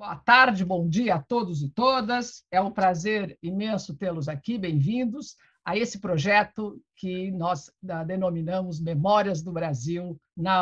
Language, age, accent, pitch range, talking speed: Portuguese, 50-69, Brazilian, 175-235 Hz, 140 wpm